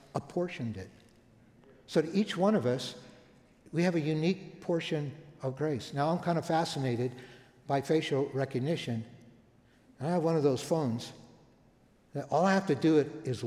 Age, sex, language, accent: 60-79, male, English, American